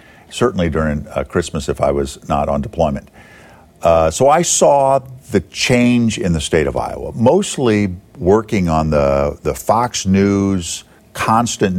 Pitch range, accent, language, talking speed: 90-145 Hz, American, English, 150 wpm